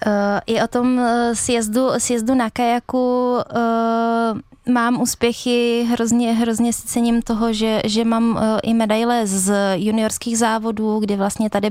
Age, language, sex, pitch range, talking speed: 20-39, Czech, female, 205-230 Hz, 150 wpm